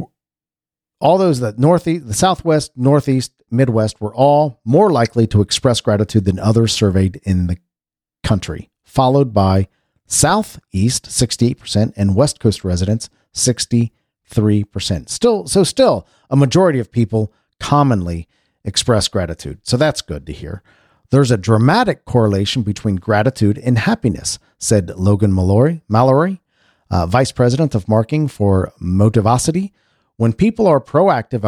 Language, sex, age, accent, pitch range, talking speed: English, male, 50-69, American, 100-145 Hz, 130 wpm